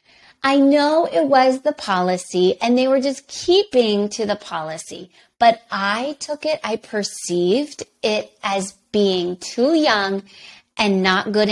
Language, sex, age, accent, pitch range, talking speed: English, female, 30-49, American, 200-260 Hz, 145 wpm